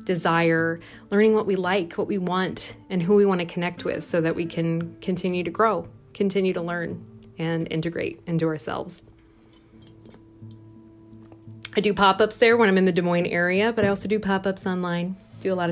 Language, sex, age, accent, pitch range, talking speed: English, female, 30-49, American, 165-195 Hz, 185 wpm